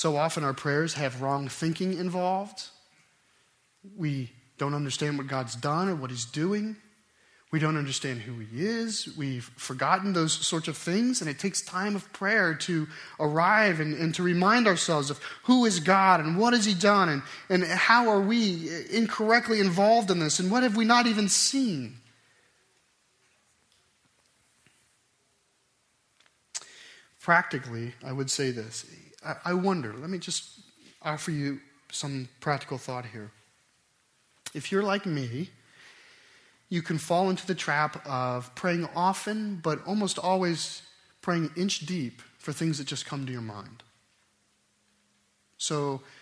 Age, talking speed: 30-49, 145 wpm